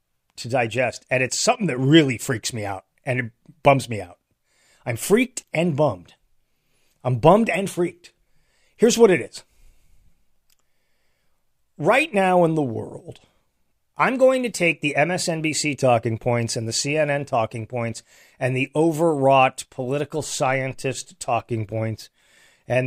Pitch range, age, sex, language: 120-160 Hz, 40-59, male, English